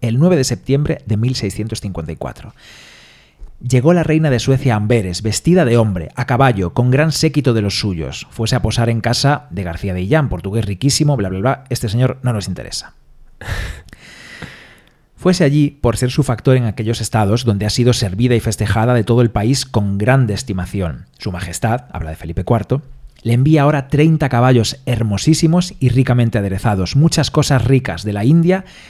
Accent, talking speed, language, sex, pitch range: Spanish, 180 wpm, Spanish, male, 105-140 Hz